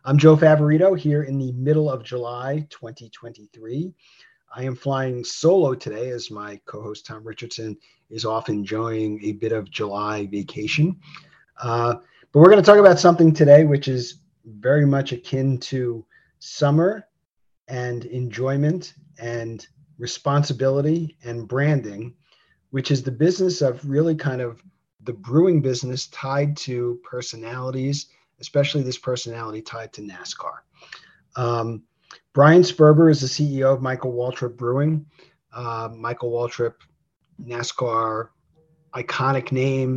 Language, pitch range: English, 120-145 Hz